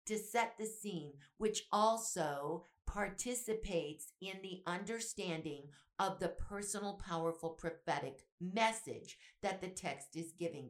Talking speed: 120 wpm